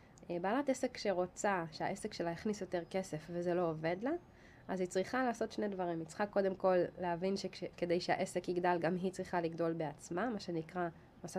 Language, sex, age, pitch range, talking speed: Hebrew, female, 20-39, 170-195 Hz, 180 wpm